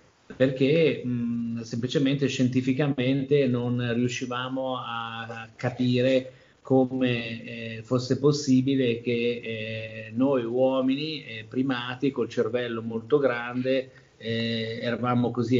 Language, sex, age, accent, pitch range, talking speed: Italian, male, 30-49, native, 120-135 Hz, 90 wpm